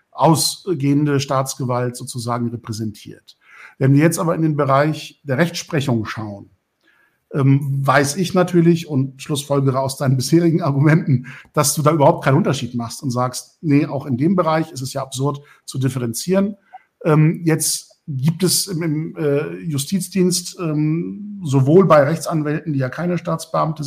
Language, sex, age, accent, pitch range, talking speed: German, male, 50-69, German, 135-170 Hz, 140 wpm